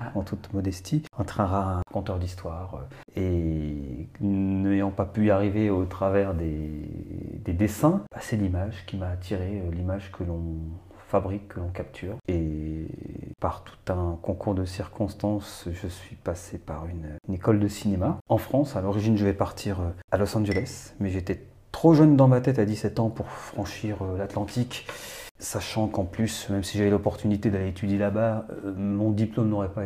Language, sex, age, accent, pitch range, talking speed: French, male, 40-59, French, 95-110 Hz, 175 wpm